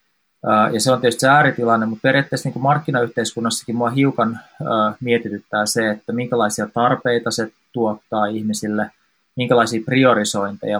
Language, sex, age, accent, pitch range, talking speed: Finnish, male, 20-39, native, 105-125 Hz, 130 wpm